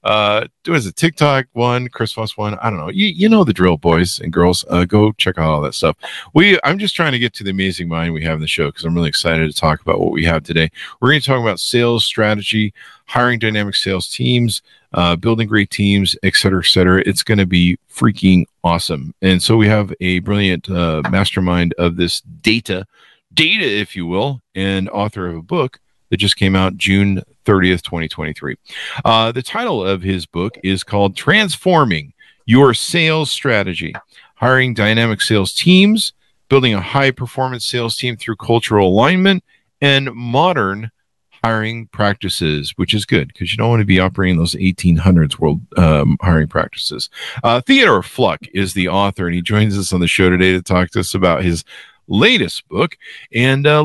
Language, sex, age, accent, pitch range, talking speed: English, male, 40-59, American, 90-120 Hz, 190 wpm